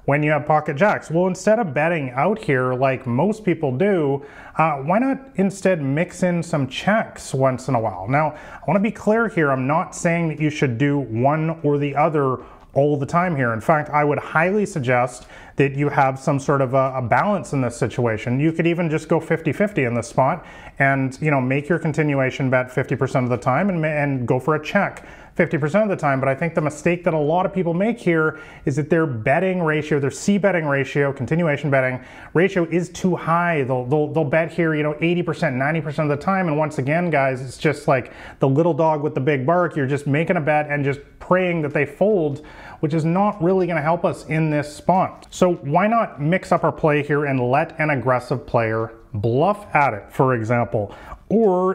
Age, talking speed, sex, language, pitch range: 30-49, 225 wpm, male, English, 135-170 Hz